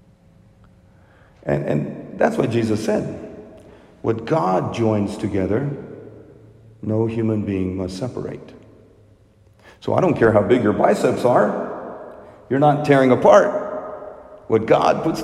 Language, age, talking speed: English, 50-69, 120 wpm